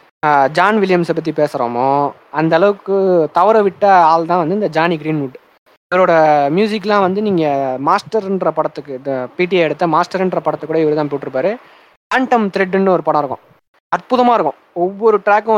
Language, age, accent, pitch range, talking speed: Tamil, 20-39, native, 145-200 Hz, 140 wpm